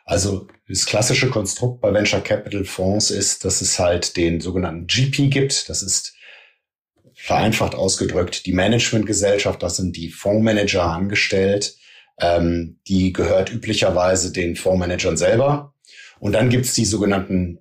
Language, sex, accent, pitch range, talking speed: German, male, German, 90-115 Hz, 135 wpm